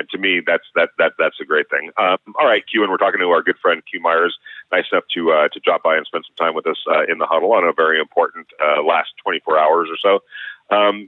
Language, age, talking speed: English, 40-59, 275 wpm